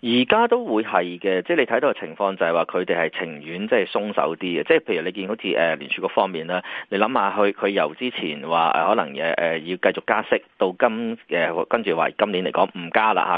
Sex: male